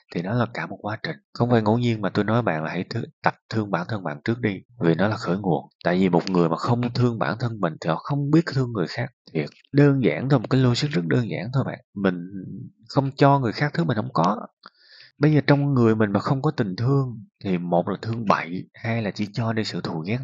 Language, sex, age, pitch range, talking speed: Vietnamese, male, 20-39, 100-135 Hz, 270 wpm